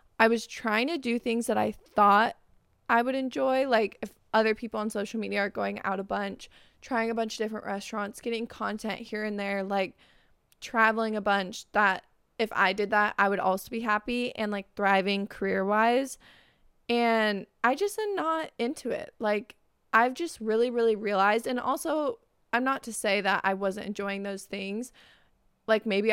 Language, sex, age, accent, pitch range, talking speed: English, female, 20-39, American, 200-235 Hz, 185 wpm